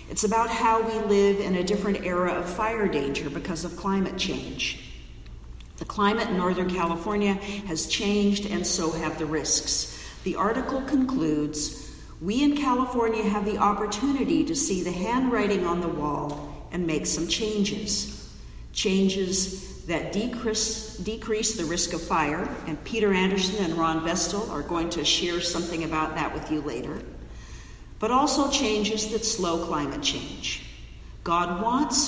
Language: English